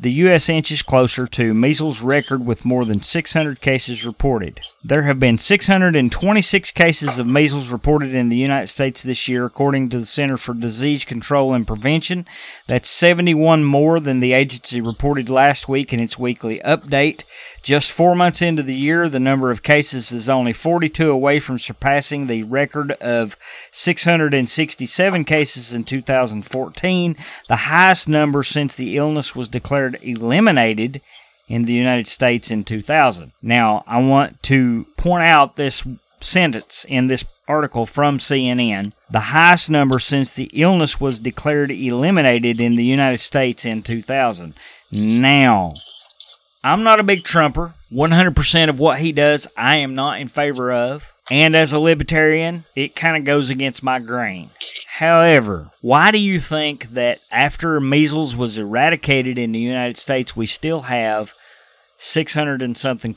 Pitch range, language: 120-150 Hz, English